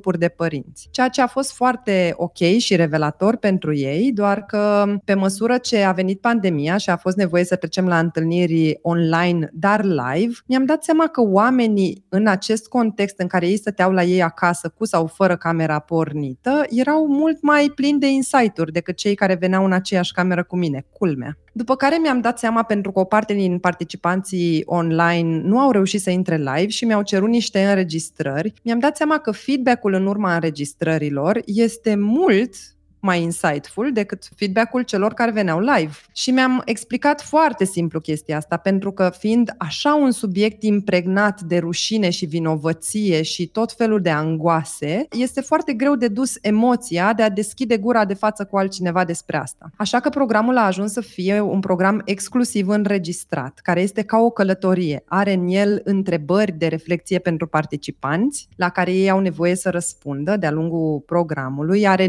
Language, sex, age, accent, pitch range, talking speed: Romanian, female, 20-39, native, 170-225 Hz, 175 wpm